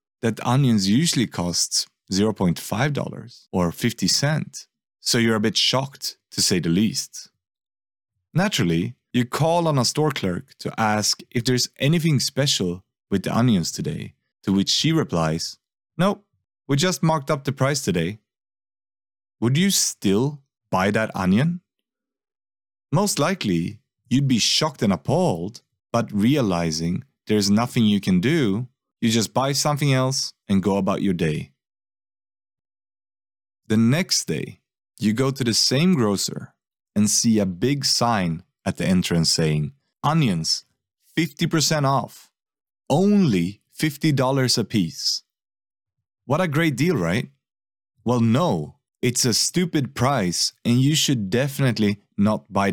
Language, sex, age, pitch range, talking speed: English, male, 30-49, 100-140 Hz, 135 wpm